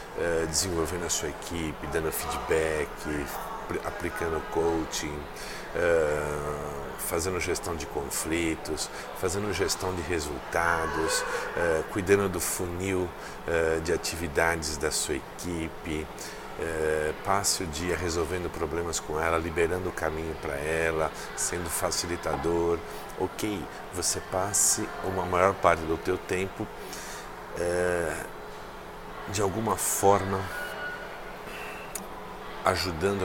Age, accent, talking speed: 50-69, Brazilian, 105 wpm